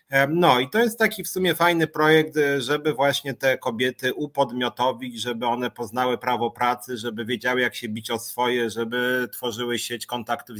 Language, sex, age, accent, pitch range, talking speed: Polish, male, 30-49, native, 120-155 Hz, 170 wpm